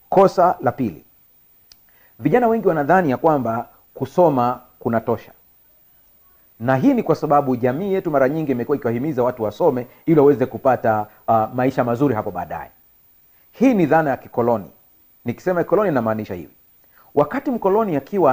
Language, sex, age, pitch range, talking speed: Swahili, male, 40-59, 120-150 Hz, 140 wpm